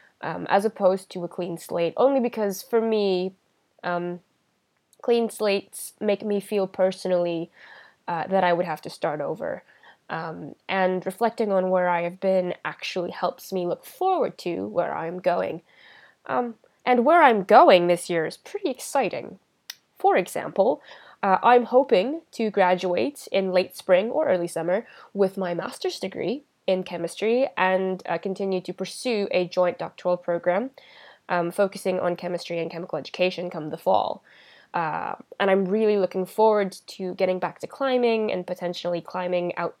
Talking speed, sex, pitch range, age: 160 wpm, female, 175-215 Hz, 10-29